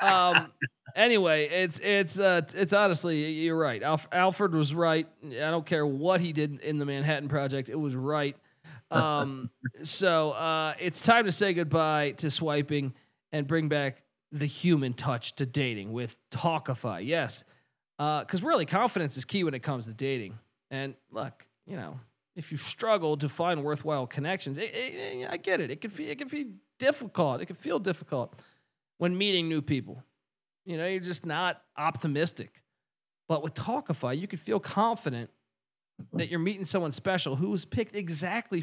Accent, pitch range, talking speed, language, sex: American, 140-185 Hz, 175 wpm, English, male